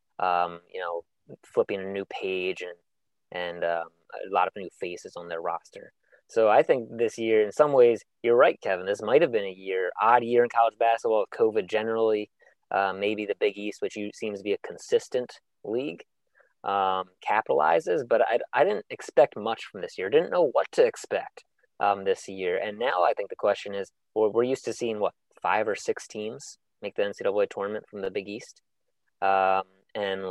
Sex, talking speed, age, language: male, 200 wpm, 20-39, English